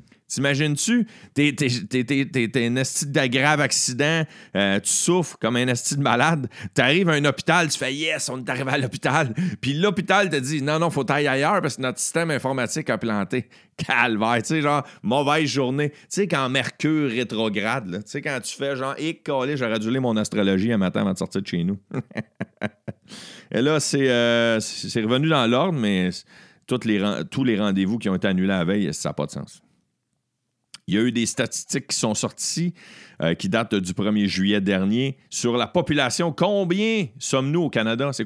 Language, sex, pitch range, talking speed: French, male, 110-150 Hz, 205 wpm